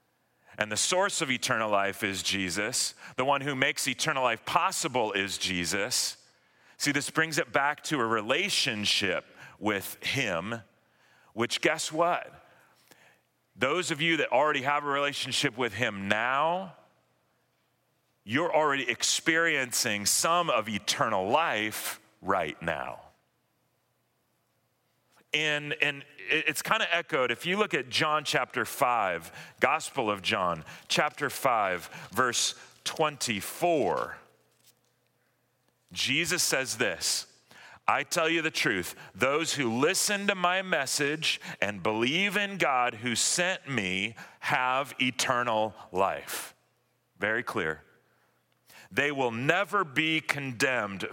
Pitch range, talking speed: 105-155 Hz, 115 wpm